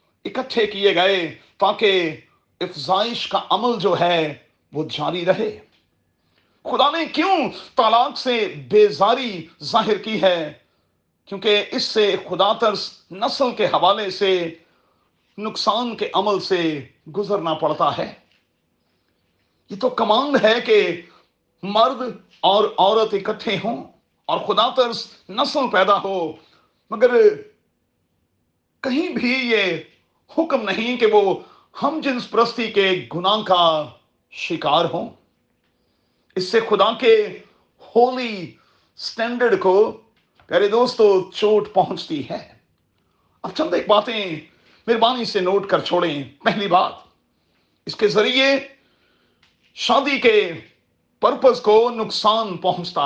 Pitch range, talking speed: 180-240 Hz, 110 wpm